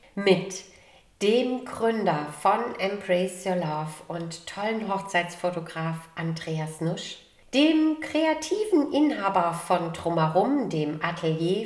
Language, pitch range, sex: German, 170-230 Hz, female